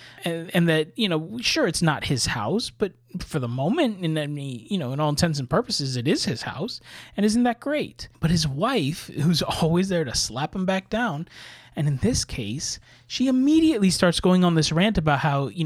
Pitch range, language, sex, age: 130-175 Hz, English, male, 20-39